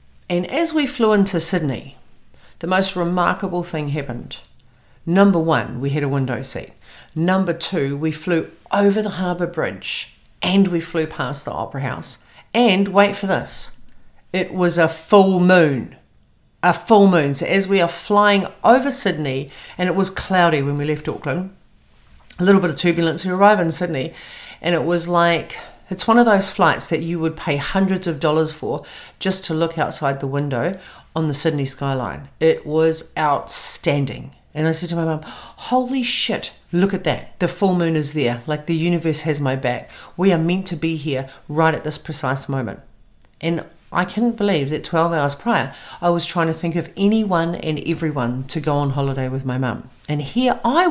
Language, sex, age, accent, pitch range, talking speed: English, female, 50-69, Australian, 145-185 Hz, 185 wpm